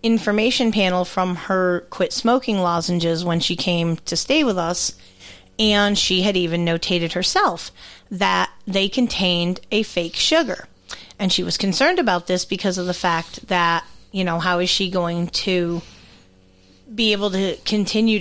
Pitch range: 175-210 Hz